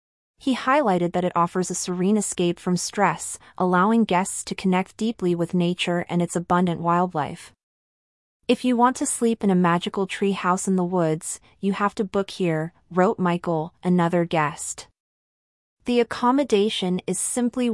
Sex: female